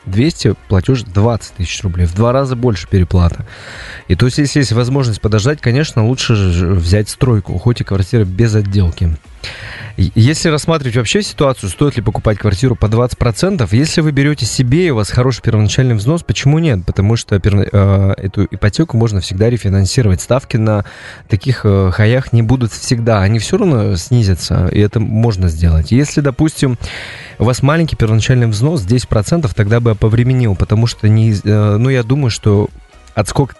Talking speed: 175 wpm